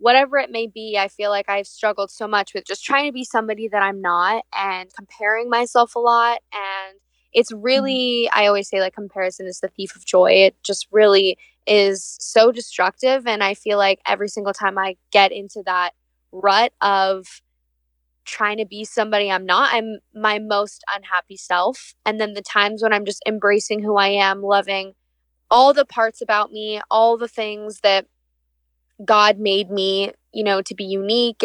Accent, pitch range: American, 195-220 Hz